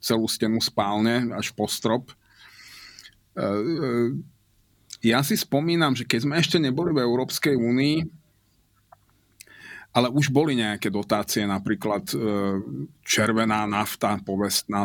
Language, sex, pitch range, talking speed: Slovak, male, 105-125 Hz, 115 wpm